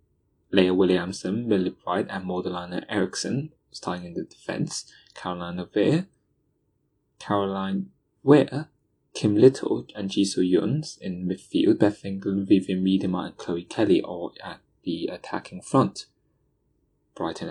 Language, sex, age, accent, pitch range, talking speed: English, male, 20-39, British, 90-105 Hz, 115 wpm